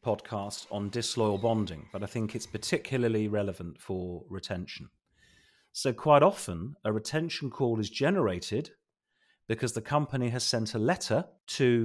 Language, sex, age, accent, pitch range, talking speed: English, male, 40-59, British, 95-125 Hz, 140 wpm